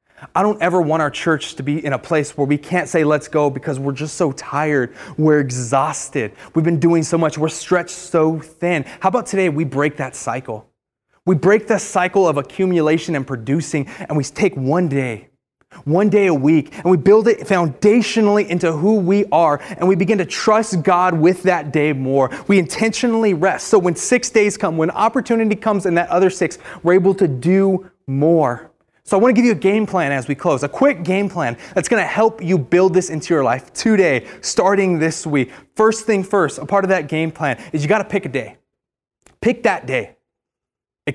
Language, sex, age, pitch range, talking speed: English, male, 20-39, 145-200 Hz, 215 wpm